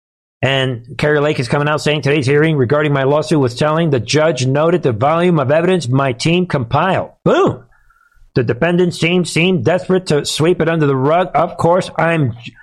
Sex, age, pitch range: male, 50-69, 125-165 Hz